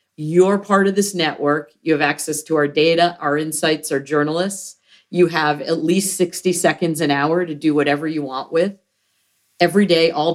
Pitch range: 155-195 Hz